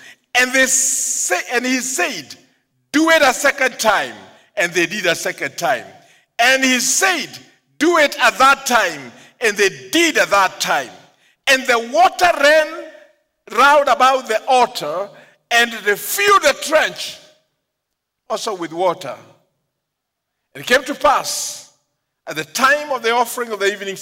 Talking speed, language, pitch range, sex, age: 150 wpm, English, 215-295 Hz, male, 50-69